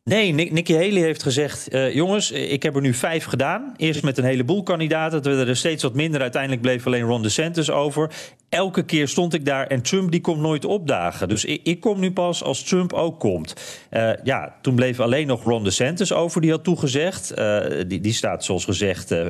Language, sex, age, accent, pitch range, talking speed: Dutch, male, 40-59, Dutch, 105-150 Hz, 215 wpm